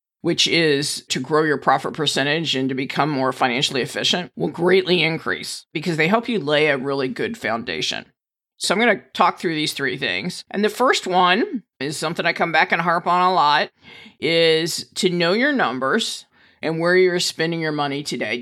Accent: American